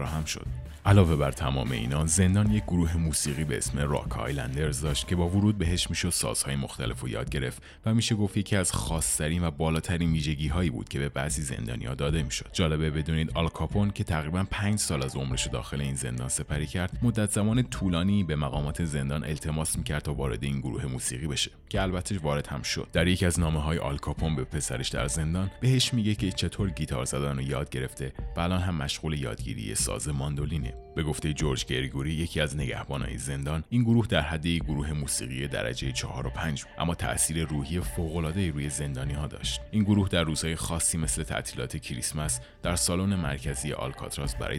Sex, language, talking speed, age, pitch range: male, Persian, 190 wpm, 30-49, 70-90 Hz